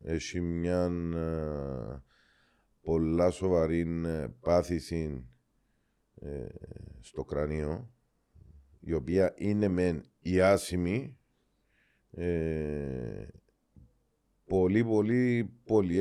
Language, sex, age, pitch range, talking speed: Greek, male, 50-69, 80-110 Hz, 60 wpm